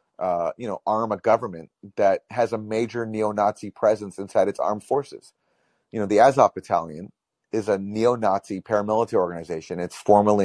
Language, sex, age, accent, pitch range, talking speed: English, male, 30-49, American, 95-115 Hz, 160 wpm